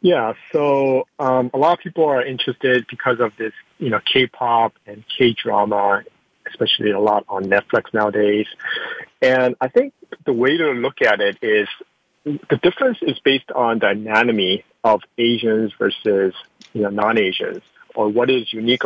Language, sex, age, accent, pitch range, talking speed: English, male, 40-59, American, 115-170 Hz, 160 wpm